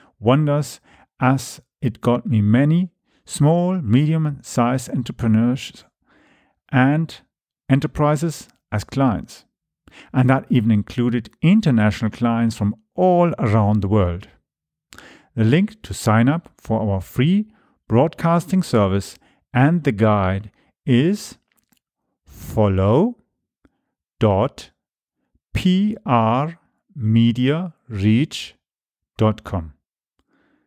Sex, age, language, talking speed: male, 50-69, English, 75 wpm